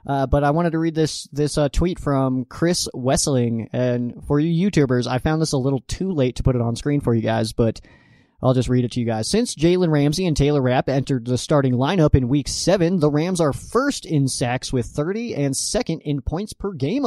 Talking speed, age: 235 wpm, 20-39